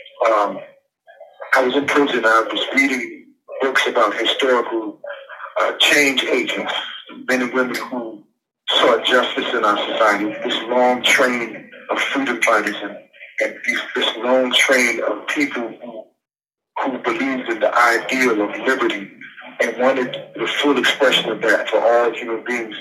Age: 40-59